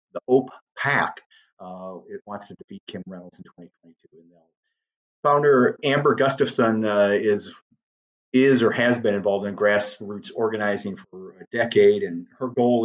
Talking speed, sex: 145 wpm, male